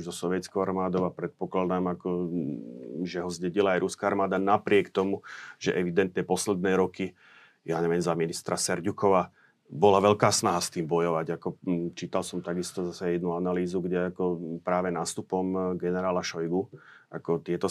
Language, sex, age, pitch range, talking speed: Slovak, male, 30-49, 90-95 Hz, 135 wpm